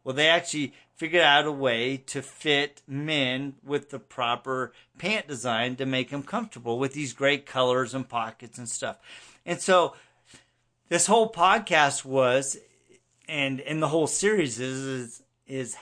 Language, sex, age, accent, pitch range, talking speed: English, male, 40-59, American, 125-155 Hz, 155 wpm